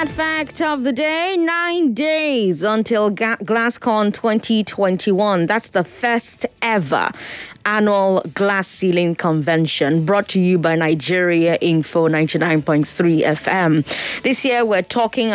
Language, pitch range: English, 165-230 Hz